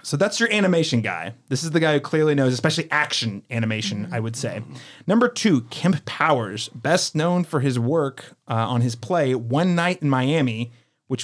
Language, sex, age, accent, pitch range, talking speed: English, male, 30-49, American, 115-150 Hz, 190 wpm